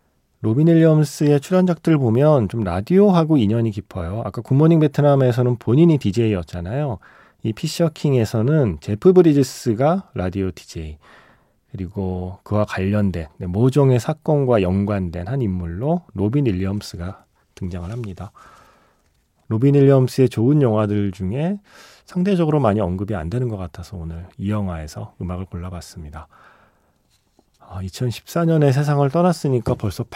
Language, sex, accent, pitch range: Korean, male, native, 95-145 Hz